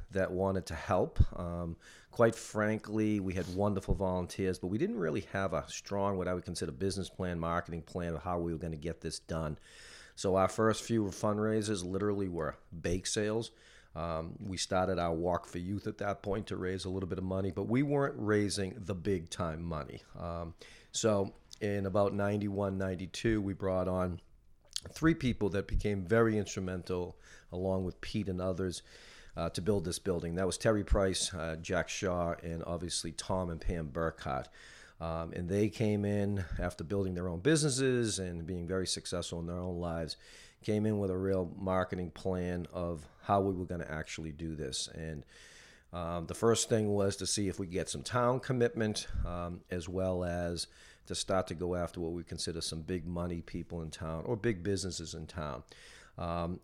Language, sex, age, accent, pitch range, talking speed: English, male, 40-59, American, 85-100 Hz, 190 wpm